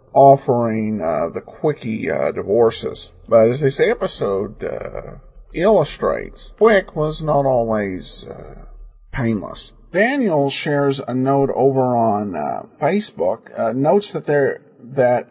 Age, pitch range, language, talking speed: 40-59, 115-150 Hz, English, 120 wpm